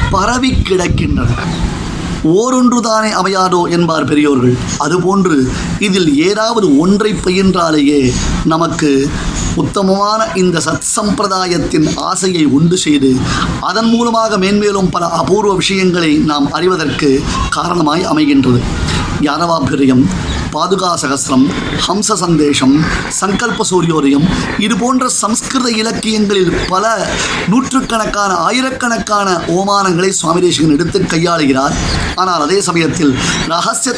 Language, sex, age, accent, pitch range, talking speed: Tamil, male, 30-49, native, 155-205 Hz, 85 wpm